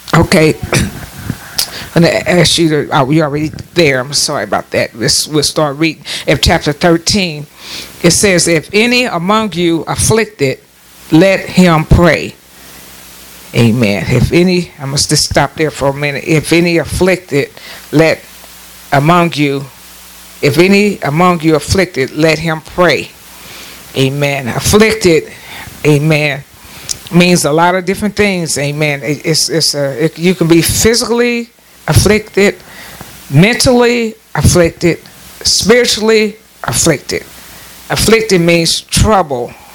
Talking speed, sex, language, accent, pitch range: 120 wpm, female, English, American, 145-185 Hz